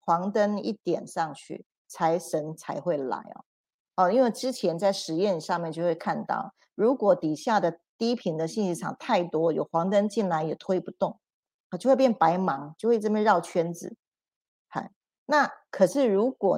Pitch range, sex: 170-225 Hz, female